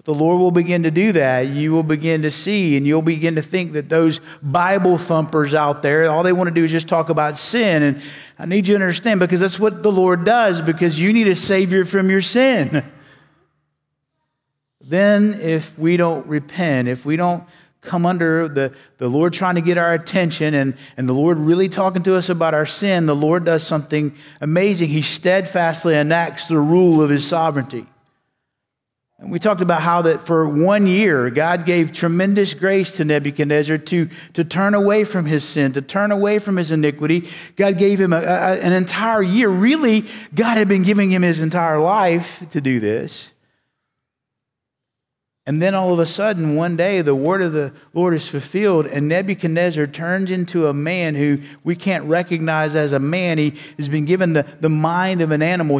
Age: 50-69